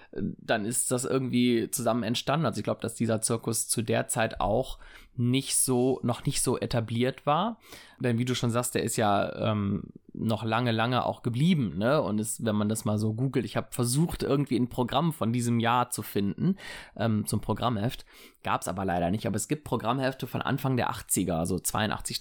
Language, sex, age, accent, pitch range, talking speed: German, male, 20-39, German, 105-125 Hz, 205 wpm